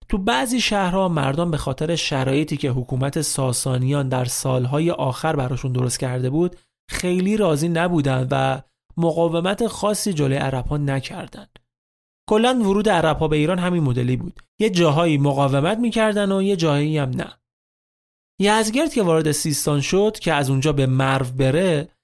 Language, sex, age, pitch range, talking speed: Persian, male, 30-49, 140-200 Hz, 145 wpm